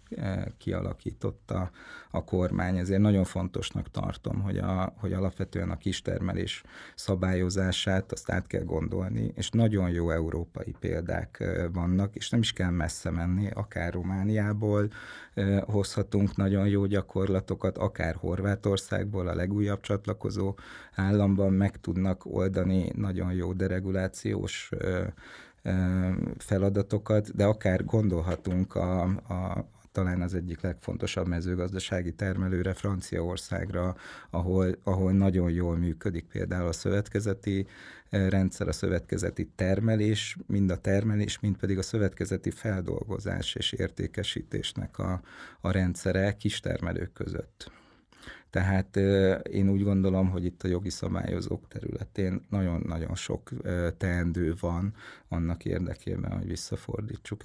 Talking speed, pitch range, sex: 110 wpm, 90-100 Hz, male